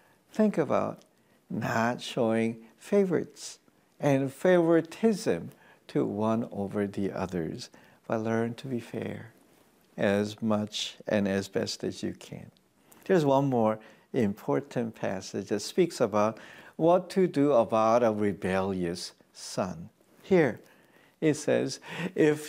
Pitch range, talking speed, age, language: 120-185 Hz, 115 wpm, 60-79, English